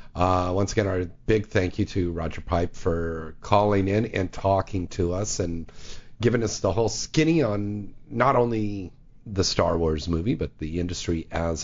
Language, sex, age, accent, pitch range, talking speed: English, male, 40-59, American, 85-115 Hz, 175 wpm